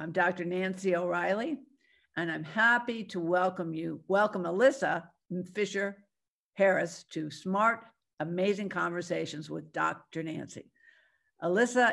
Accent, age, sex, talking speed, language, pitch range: American, 60-79, female, 105 wpm, English, 170-205 Hz